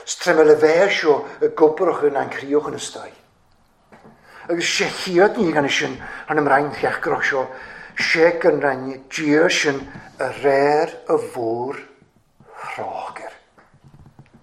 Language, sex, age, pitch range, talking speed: English, male, 50-69, 145-190 Hz, 65 wpm